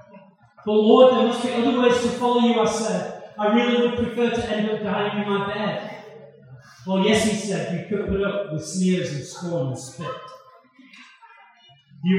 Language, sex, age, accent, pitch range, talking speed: English, male, 30-49, British, 155-220 Hz, 185 wpm